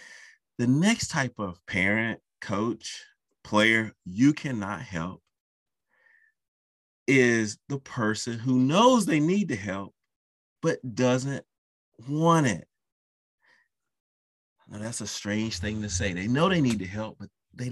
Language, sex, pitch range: English, male, 100-145 Hz